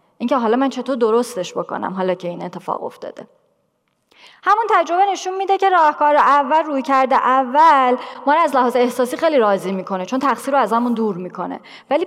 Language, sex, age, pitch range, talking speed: Persian, female, 30-49, 225-310 Hz, 185 wpm